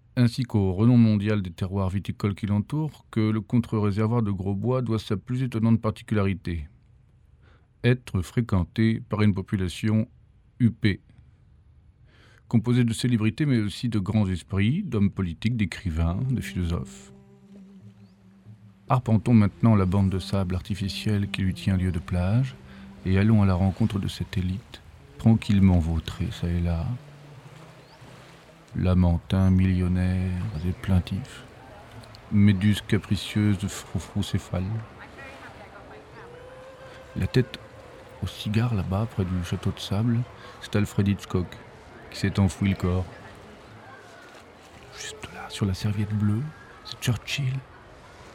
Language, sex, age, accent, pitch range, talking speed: French, male, 40-59, French, 95-115 Hz, 125 wpm